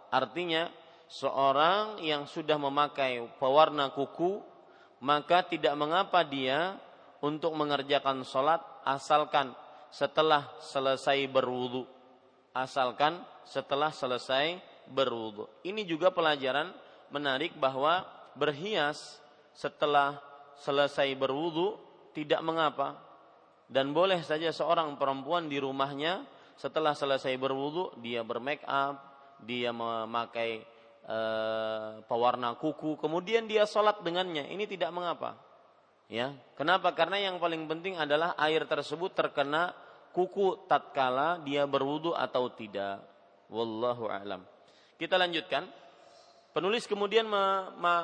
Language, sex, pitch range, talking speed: Malay, male, 135-170 Hz, 100 wpm